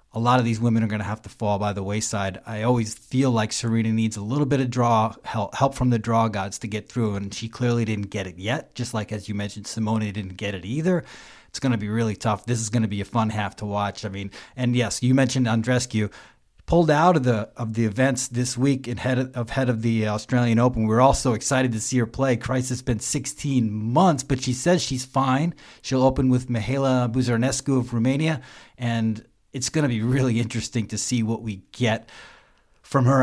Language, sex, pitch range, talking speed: English, male, 110-130 Hz, 235 wpm